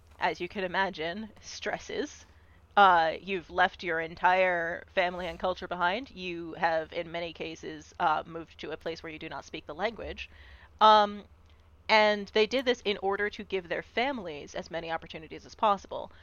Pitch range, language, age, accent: 165-205 Hz, English, 30-49, American